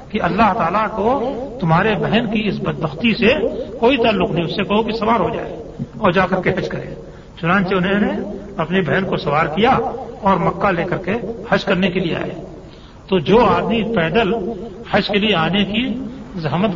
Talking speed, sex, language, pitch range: 190 wpm, male, Urdu, 180-225 Hz